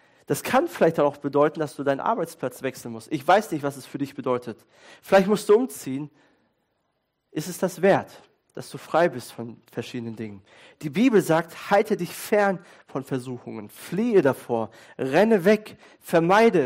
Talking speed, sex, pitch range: 170 wpm, male, 135-180 Hz